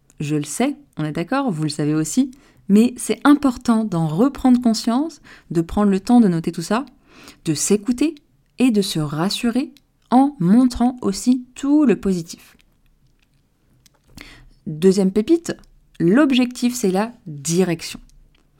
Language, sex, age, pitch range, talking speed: French, female, 20-39, 170-245 Hz, 135 wpm